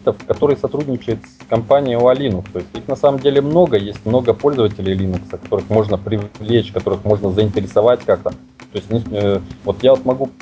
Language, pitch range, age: Russian, 105-145 Hz, 30-49